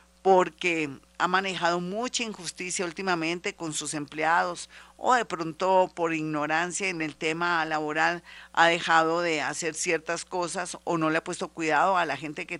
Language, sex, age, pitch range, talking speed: Spanish, female, 50-69, 165-195 Hz, 160 wpm